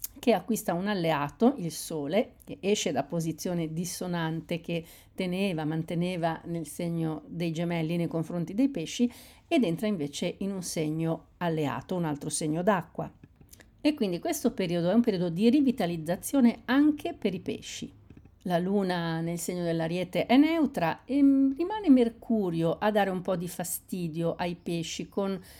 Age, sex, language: 50-69, female, Italian